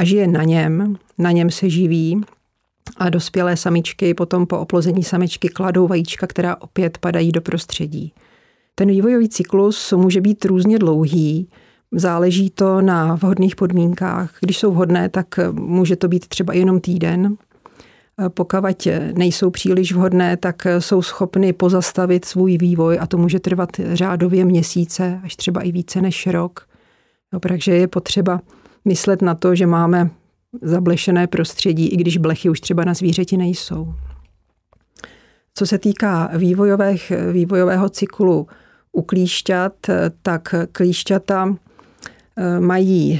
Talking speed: 135 wpm